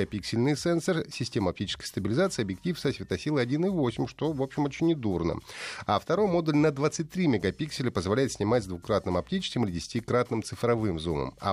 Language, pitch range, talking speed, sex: Russian, 95-140 Hz, 155 wpm, male